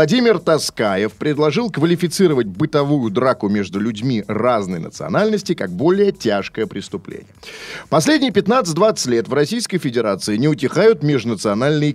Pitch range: 120-175 Hz